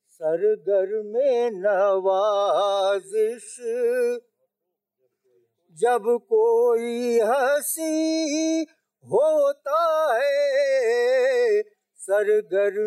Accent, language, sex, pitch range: native, Hindi, male, 215-310 Hz